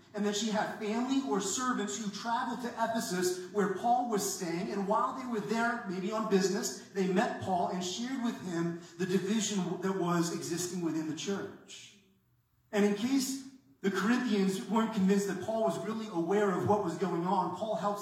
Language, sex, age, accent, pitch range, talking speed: English, male, 30-49, American, 180-210 Hz, 190 wpm